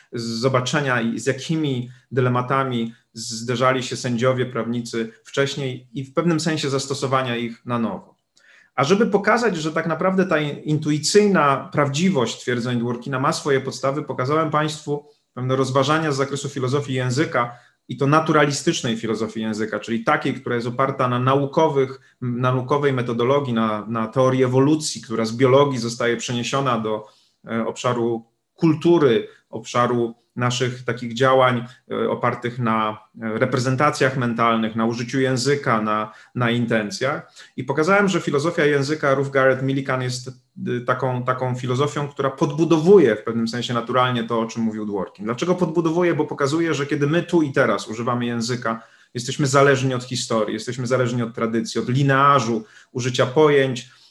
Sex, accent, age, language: male, native, 30-49, Polish